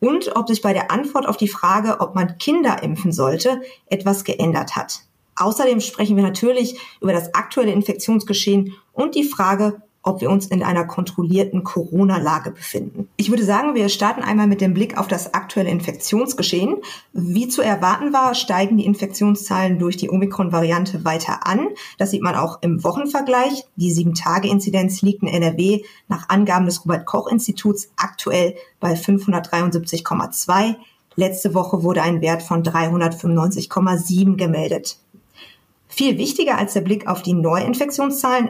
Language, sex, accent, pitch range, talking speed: German, female, German, 180-210 Hz, 150 wpm